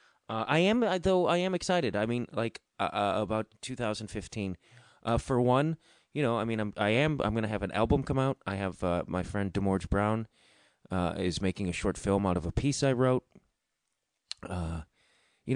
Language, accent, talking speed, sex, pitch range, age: English, American, 195 wpm, male, 90-120 Hz, 30-49